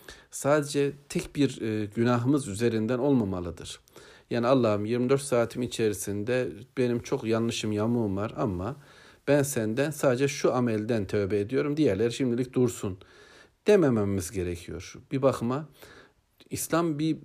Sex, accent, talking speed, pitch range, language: male, native, 115 wpm, 100-135 Hz, Turkish